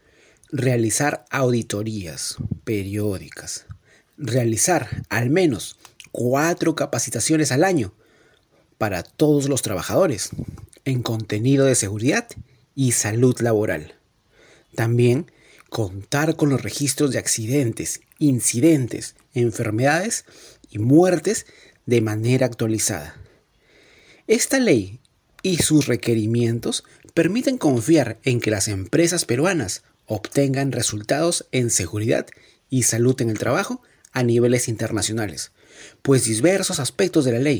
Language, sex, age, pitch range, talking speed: Spanish, male, 40-59, 110-150 Hz, 105 wpm